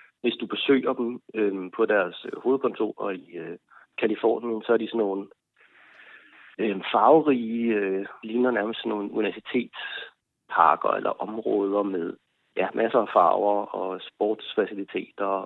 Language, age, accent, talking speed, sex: Danish, 30-49, native, 130 wpm, male